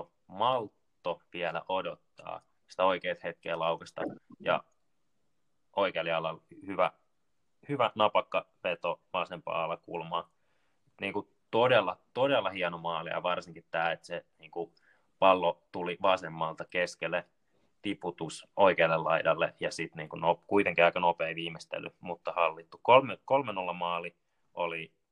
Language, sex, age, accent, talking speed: Finnish, male, 20-39, native, 110 wpm